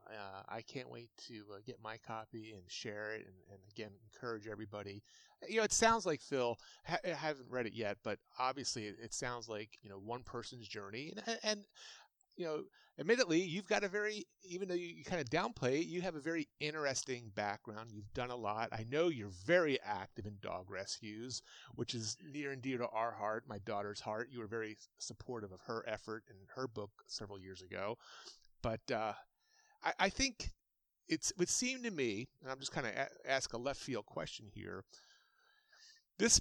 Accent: American